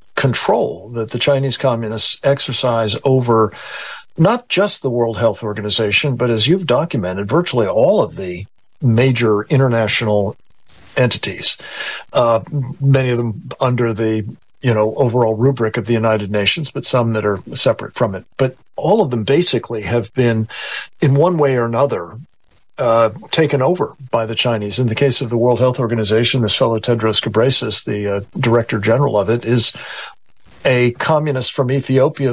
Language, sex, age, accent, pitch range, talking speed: English, male, 50-69, American, 115-140 Hz, 160 wpm